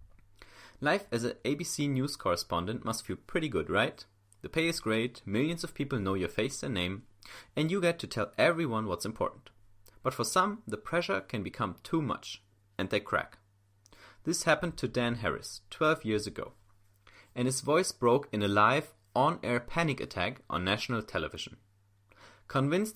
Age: 30-49